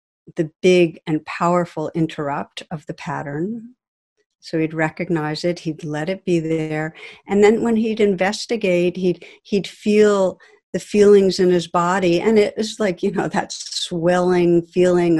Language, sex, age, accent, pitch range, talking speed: English, female, 50-69, American, 170-200 Hz, 155 wpm